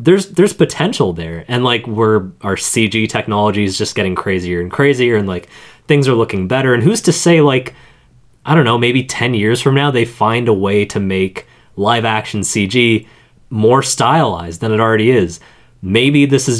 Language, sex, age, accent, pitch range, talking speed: English, male, 20-39, American, 105-125 Hz, 190 wpm